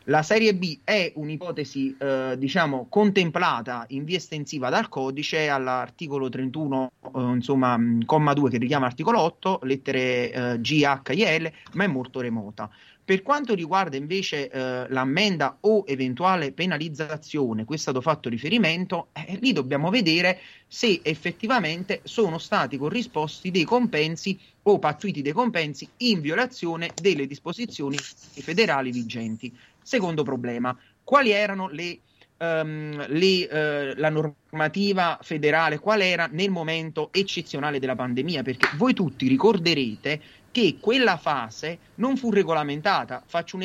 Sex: male